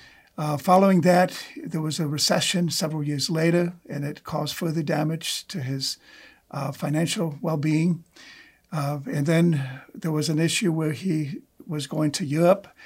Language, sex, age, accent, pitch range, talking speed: English, male, 50-69, American, 145-170 Hz, 155 wpm